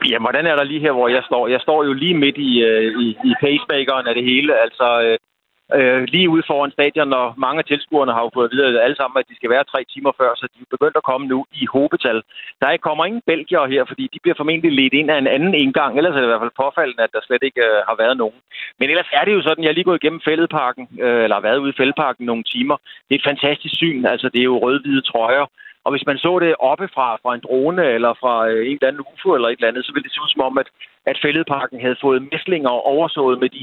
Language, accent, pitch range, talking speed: Danish, native, 130-165 Hz, 275 wpm